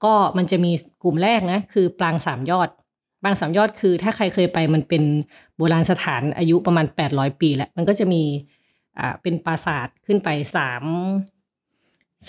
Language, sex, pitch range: Thai, female, 155-200 Hz